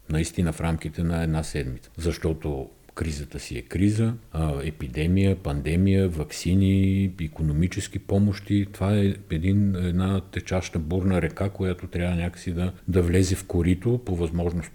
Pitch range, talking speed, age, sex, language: 85-105 Hz, 130 wpm, 50-69, male, Bulgarian